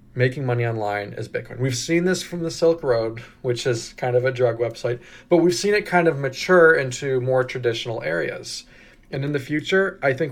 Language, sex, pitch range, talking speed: English, male, 120-150 Hz, 210 wpm